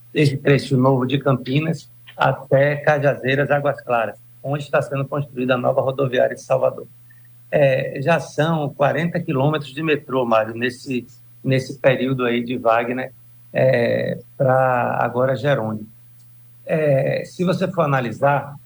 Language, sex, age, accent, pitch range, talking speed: Portuguese, male, 60-79, Brazilian, 120-145 Hz, 130 wpm